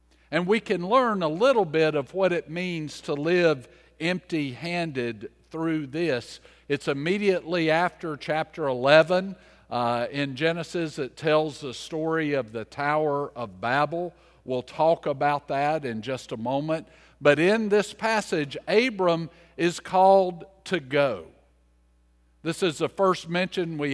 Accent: American